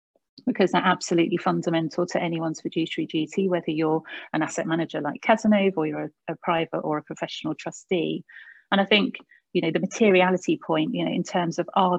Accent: British